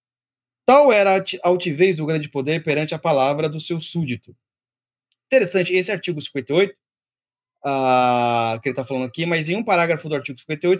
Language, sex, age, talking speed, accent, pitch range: Portuguese, male, 30-49, 160 wpm, Brazilian, 135-195 Hz